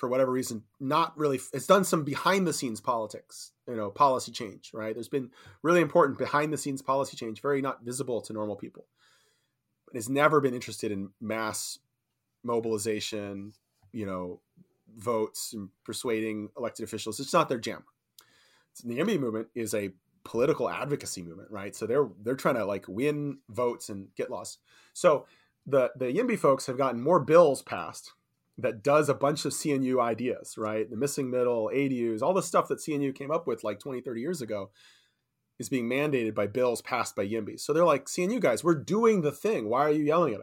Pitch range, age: 110-145 Hz, 30-49